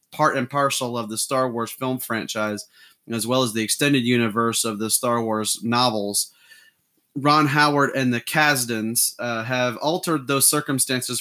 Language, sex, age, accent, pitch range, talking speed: English, male, 30-49, American, 120-140 Hz, 160 wpm